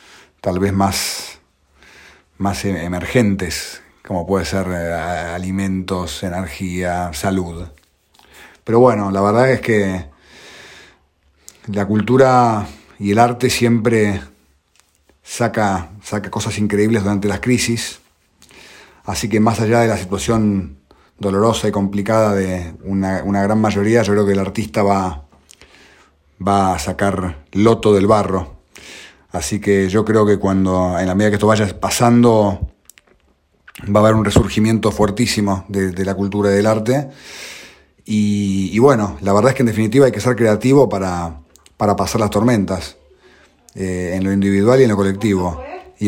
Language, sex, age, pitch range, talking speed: Spanish, male, 40-59, 90-110 Hz, 145 wpm